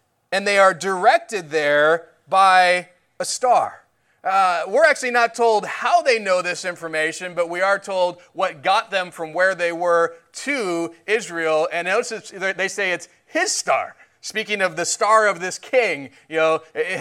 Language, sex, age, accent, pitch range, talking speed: English, male, 30-49, American, 175-220 Hz, 170 wpm